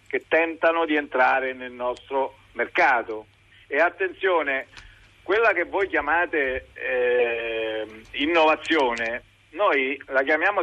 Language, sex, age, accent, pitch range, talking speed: Italian, male, 50-69, native, 140-195 Hz, 100 wpm